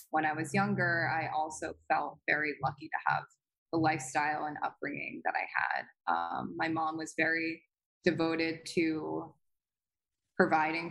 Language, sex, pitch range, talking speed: English, female, 155-180 Hz, 145 wpm